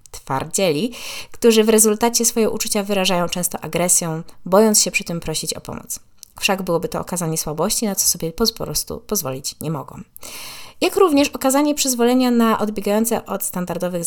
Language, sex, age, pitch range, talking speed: Polish, female, 20-39, 170-230 Hz, 160 wpm